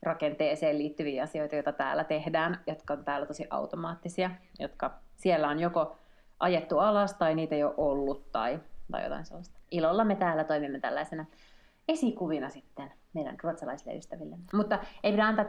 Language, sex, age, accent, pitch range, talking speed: Finnish, female, 30-49, native, 150-185 Hz, 155 wpm